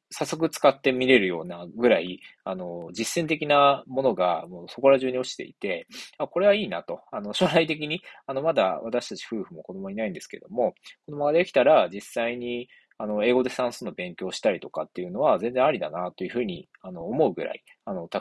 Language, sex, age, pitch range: Japanese, male, 20-39, 115-180 Hz